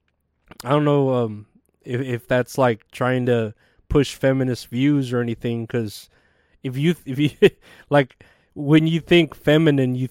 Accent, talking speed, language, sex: American, 155 wpm, English, male